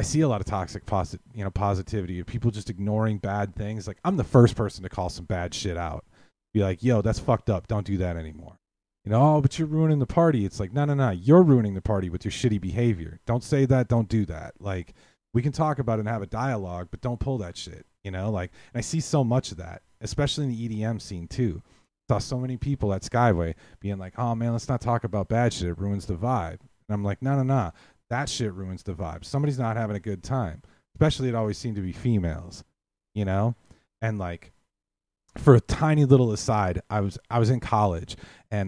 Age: 30-49